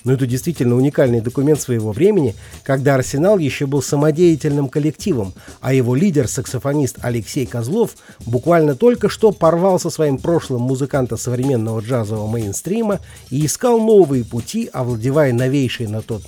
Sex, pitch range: male, 120-165 Hz